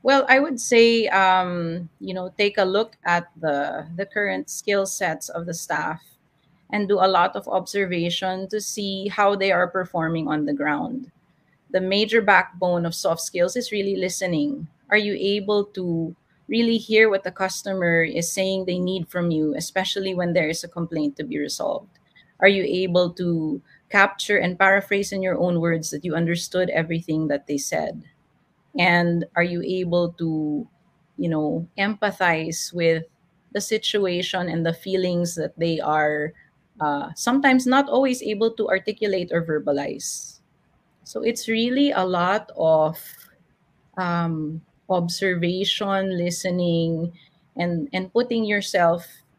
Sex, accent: female, Filipino